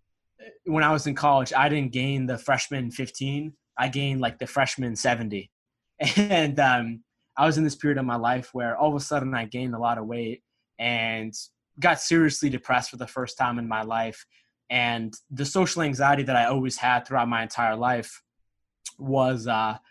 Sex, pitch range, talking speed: male, 115-140 Hz, 190 wpm